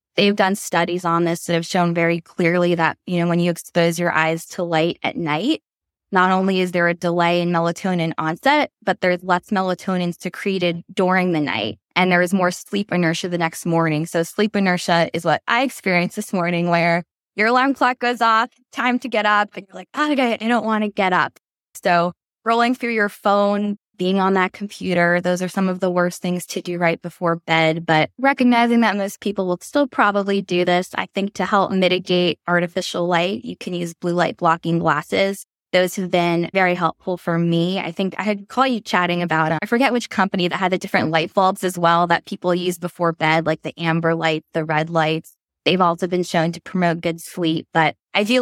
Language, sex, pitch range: English, female, 170-200 Hz